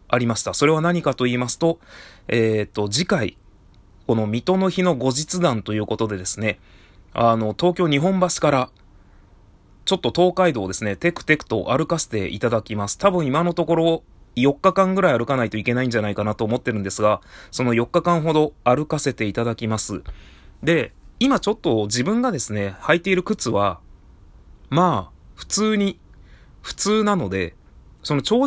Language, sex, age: Japanese, male, 20-39